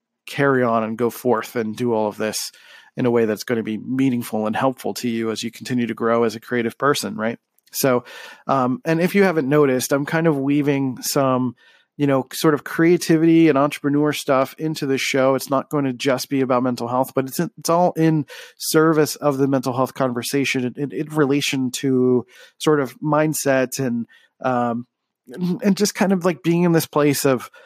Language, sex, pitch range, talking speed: English, male, 125-155 Hz, 205 wpm